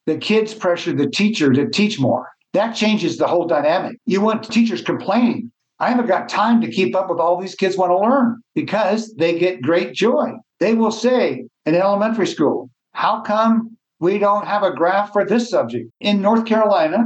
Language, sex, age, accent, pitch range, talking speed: English, male, 60-79, American, 165-215 Hz, 195 wpm